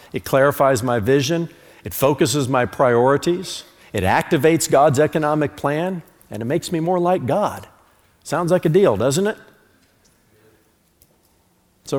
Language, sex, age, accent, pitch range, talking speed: English, male, 50-69, American, 105-150 Hz, 135 wpm